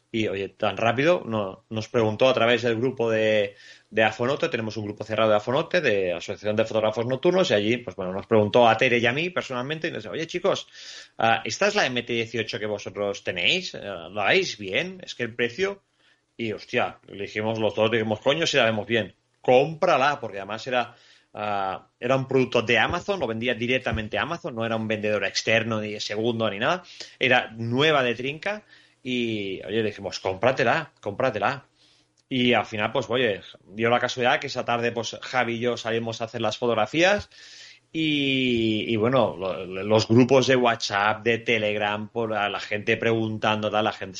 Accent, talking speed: Spanish, 190 wpm